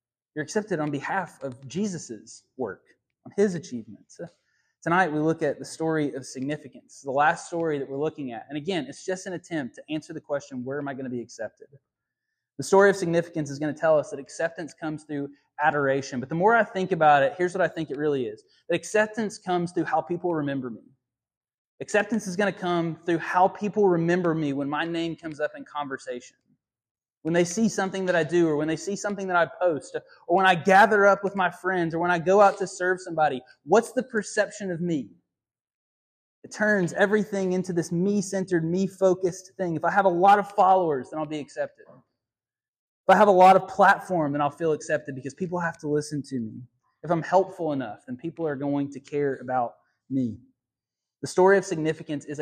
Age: 20-39